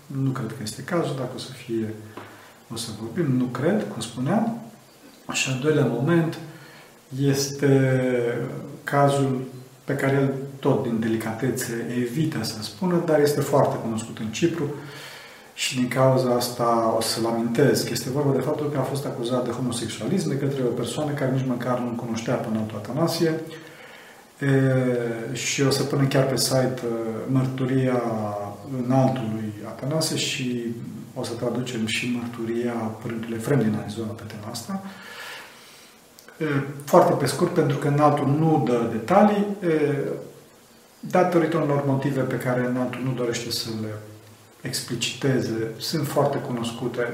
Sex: male